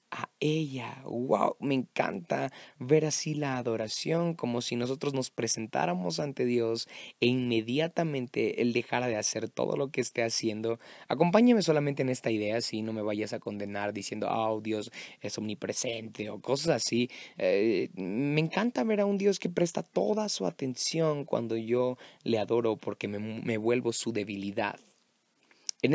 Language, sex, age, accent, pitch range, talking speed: Spanish, male, 20-39, Mexican, 110-140 Hz, 160 wpm